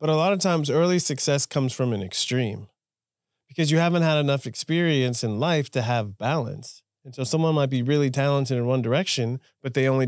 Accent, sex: American, male